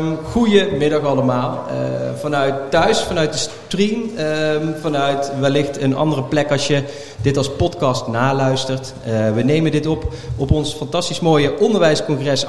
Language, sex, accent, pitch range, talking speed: Dutch, male, Dutch, 125-155 Hz, 145 wpm